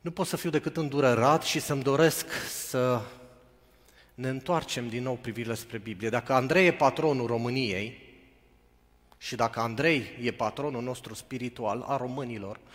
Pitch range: 95-135 Hz